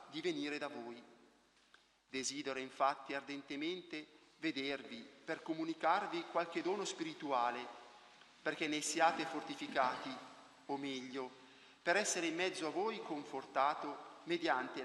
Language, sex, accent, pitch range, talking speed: Italian, male, native, 130-170 Hz, 110 wpm